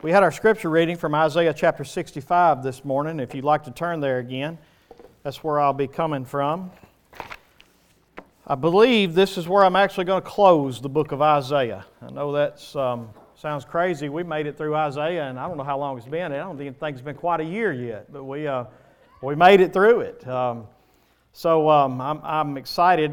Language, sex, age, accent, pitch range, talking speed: English, male, 40-59, American, 145-180 Hz, 210 wpm